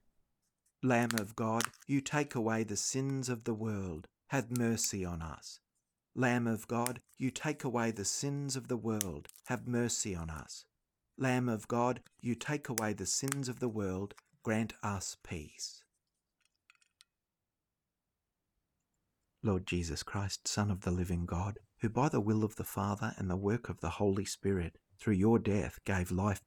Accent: Australian